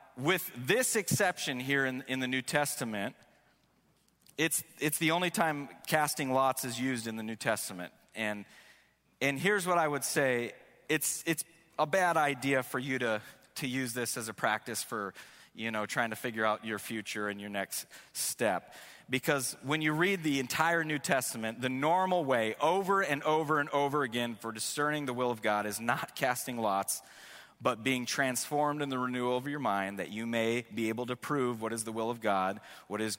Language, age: English, 30-49